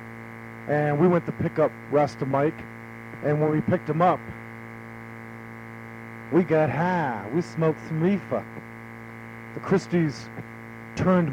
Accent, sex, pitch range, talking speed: American, male, 115-155 Hz, 125 wpm